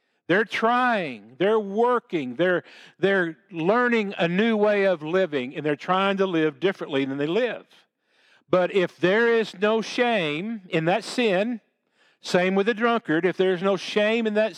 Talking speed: 165 wpm